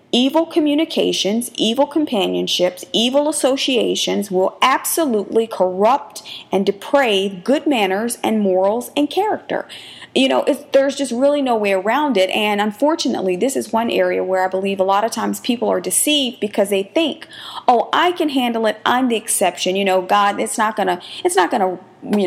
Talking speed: 175 wpm